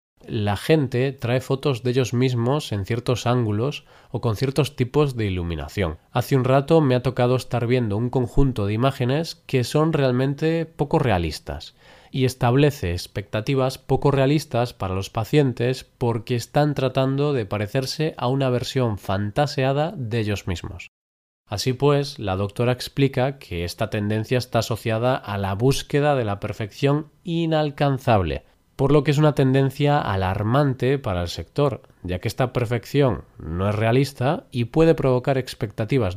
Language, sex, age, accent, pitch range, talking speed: Spanish, male, 20-39, Spanish, 110-140 Hz, 150 wpm